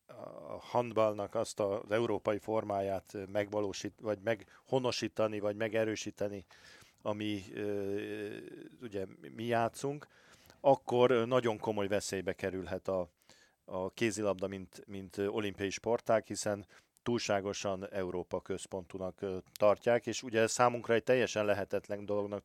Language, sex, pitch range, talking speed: Hungarian, male, 95-110 Hz, 105 wpm